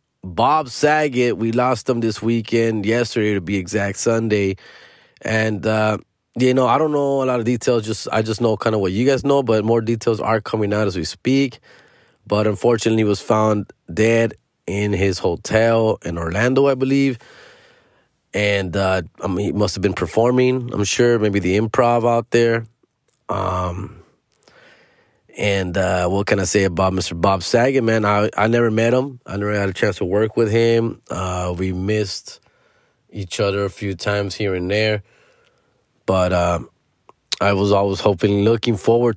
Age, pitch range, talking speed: 20-39, 100-120 Hz, 180 wpm